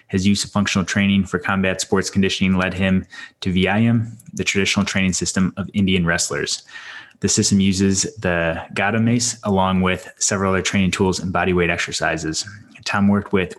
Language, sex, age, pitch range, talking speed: English, male, 20-39, 90-100 Hz, 170 wpm